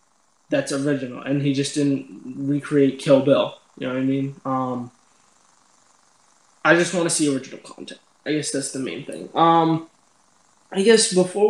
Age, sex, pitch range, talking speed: 20-39, male, 135-165 Hz, 165 wpm